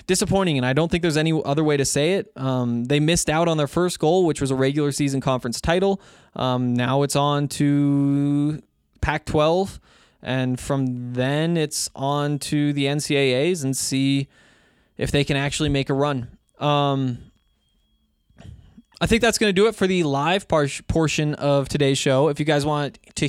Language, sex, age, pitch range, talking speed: English, male, 20-39, 130-155 Hz, 180 wpm